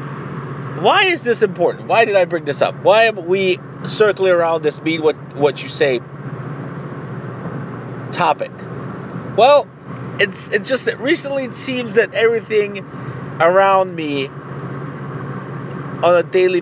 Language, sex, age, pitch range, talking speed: English, male, 30-49, 140-180 Hz, 135 wpm